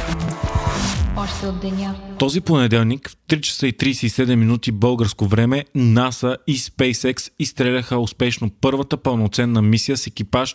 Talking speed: 115 wpm